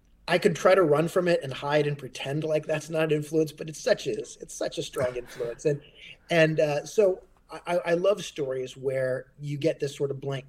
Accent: American